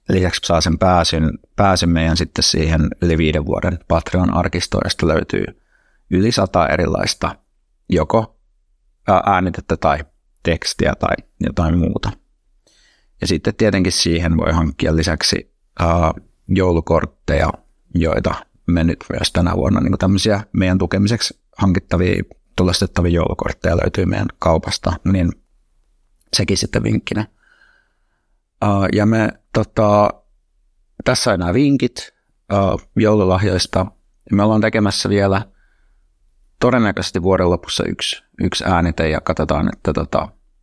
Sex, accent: male, native